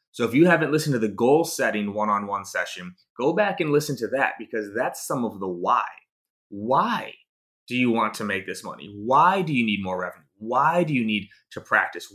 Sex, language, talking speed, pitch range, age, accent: male, English, 215 wpm, 105-155 Hz, 30-49, American